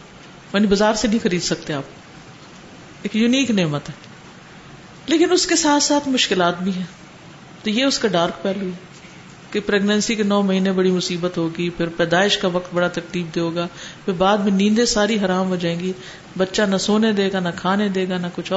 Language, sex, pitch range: Urdu, female, 180-265 Hz